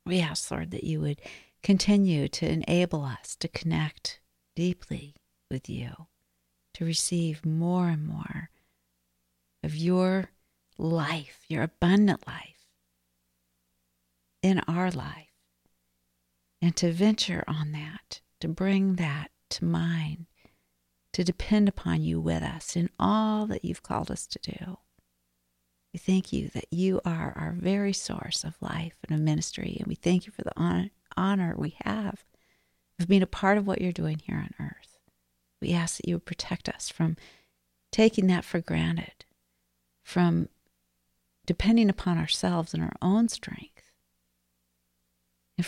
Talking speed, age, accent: 145 wpm, 50-69, American